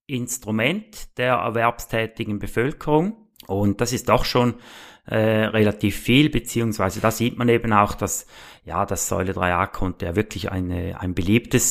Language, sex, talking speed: German, male, 145 wpm